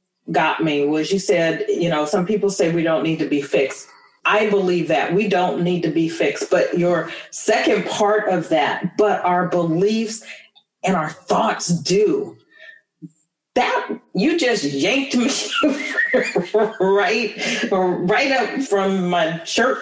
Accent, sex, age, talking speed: American, female, 40-59, 150 wpm